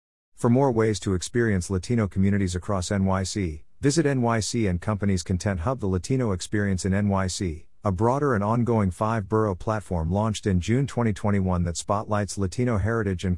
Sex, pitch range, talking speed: male, 90-115 Hz, 155 wpm